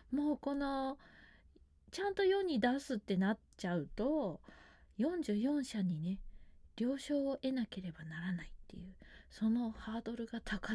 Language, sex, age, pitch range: Japanese, female, 20-39, 170-245 Hz